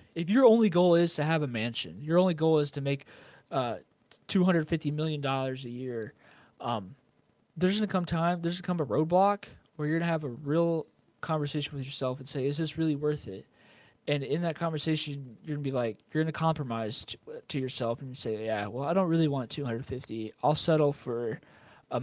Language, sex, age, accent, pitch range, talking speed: English, male, 20-39, American, 120-160 Hz, 200 wpm